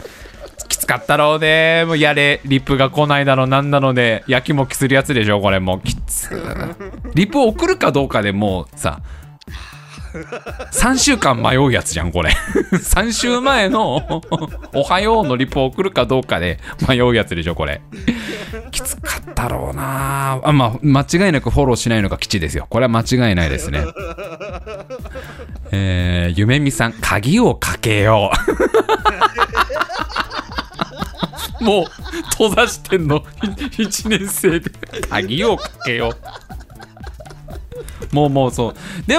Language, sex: Japanese, male